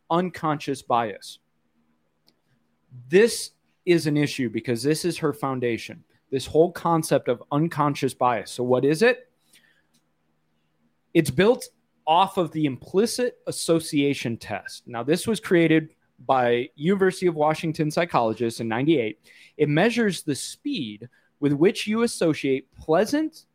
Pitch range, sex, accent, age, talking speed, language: 125-175 Hz, male, American, 30-49, 125 wpm, English